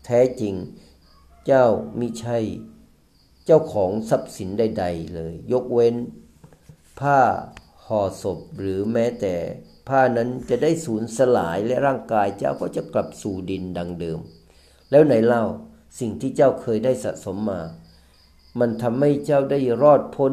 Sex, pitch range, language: male, 90-130 Hz, Thai